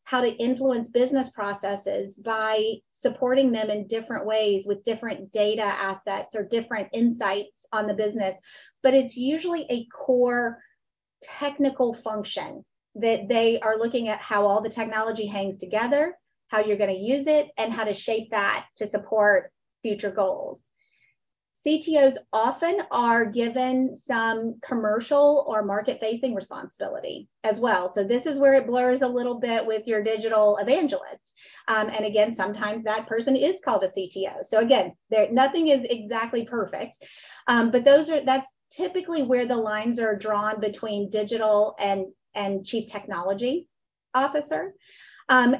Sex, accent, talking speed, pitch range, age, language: female, American, 150 wpm, 215-270 Hz, 30-49, English